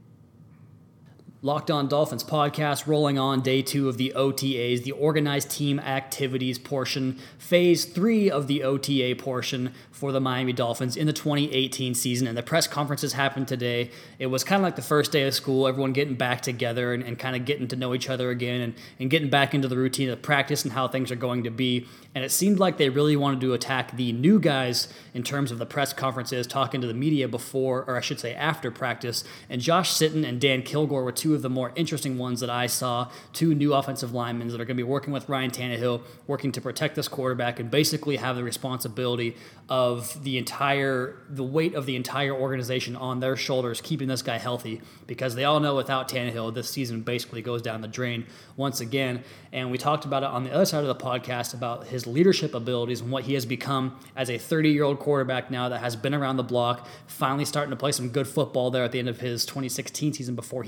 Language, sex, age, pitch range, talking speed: English, male, 20-39, 125-145 Hz, 220 wpm